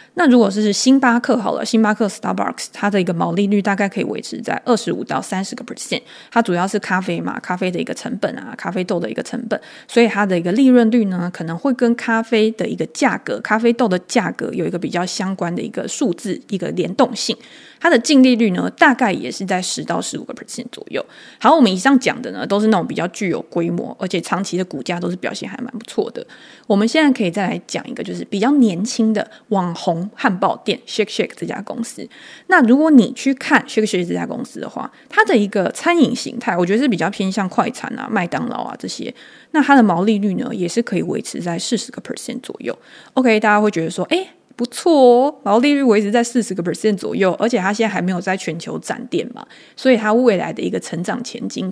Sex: female